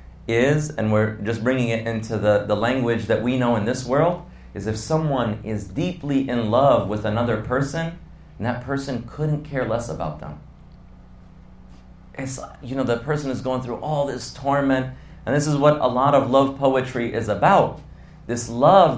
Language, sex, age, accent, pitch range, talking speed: English, male, 30-49, American, 120-150 Hz, 185 wpm